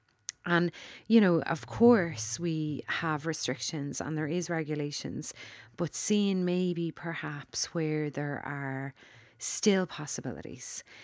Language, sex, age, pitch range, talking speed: English, female, 30-49, 150-180 Hz, 115 wpm